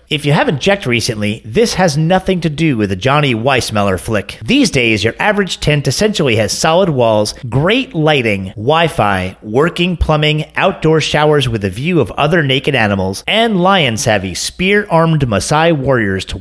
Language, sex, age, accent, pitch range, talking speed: English, male, 30-49, American, 110-170 Hz, 160 wpm